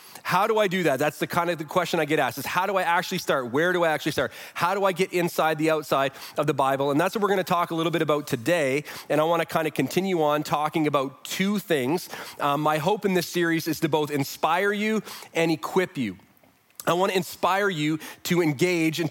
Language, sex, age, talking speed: English, male, 30-49, 245 wpm